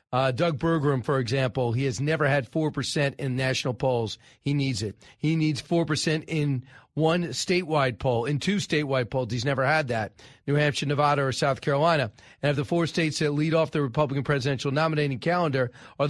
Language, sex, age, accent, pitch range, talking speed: English, male, 40-59, American, 135-175 Hz, 190 wpm